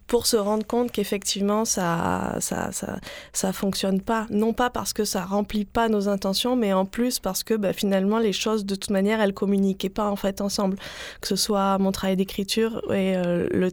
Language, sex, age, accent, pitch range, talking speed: French, female, 20-39, French, 185-215 Hz, 205 wpm